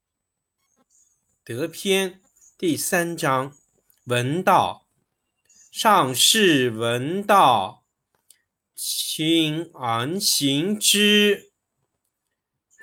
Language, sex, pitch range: Chinese, male, 130-210 Hz